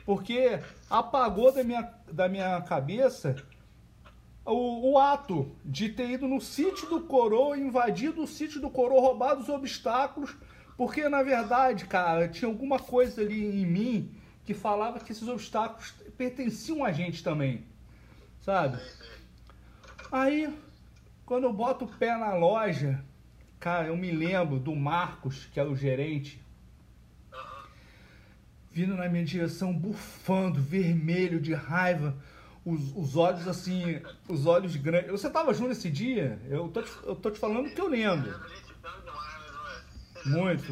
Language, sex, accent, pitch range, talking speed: Portuguese, male, Brazilian, 165-250 Hz, 140 wpm